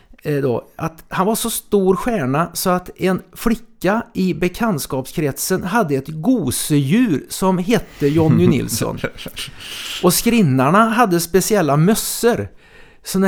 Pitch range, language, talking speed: 145-205 Hz, Swedish, 120 wpm